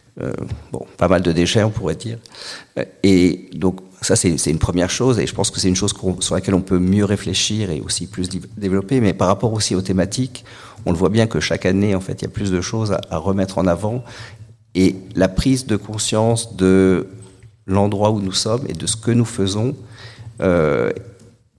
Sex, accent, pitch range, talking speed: male, French, 95-115 Hz, 215 wpm